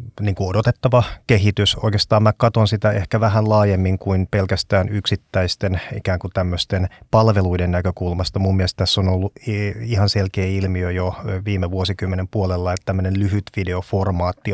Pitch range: 95-105 Hz